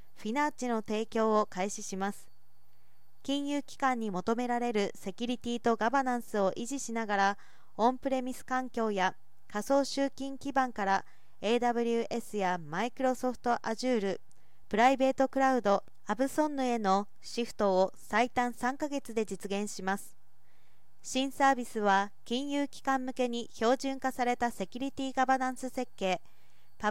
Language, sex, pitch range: Japanese, female, 200-265 Hz